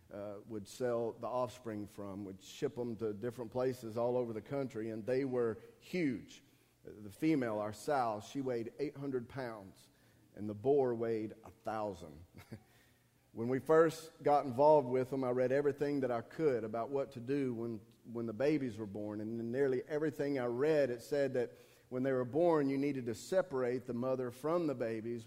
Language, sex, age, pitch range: English, male, 40-59, 115-140 Hz